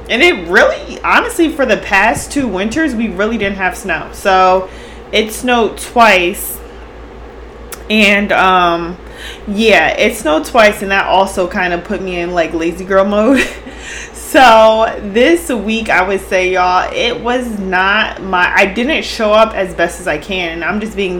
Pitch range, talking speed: 185-235 Hz, 170 wpm